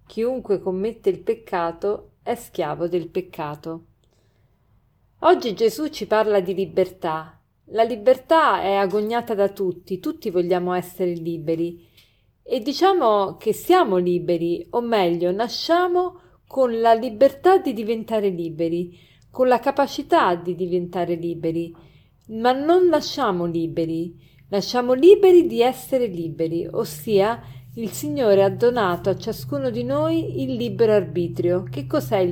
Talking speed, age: 125 wpm, 40-59